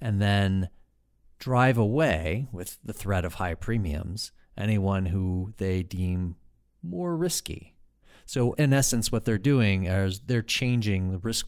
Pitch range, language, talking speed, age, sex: 90-110 Hz, English, 140 wpm, 40-59, male